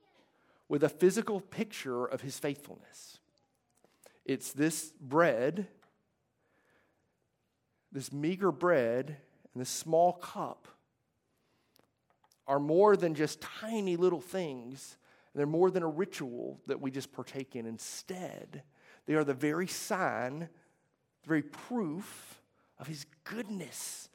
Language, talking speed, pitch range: English, 115 wpm, 130-170 Hz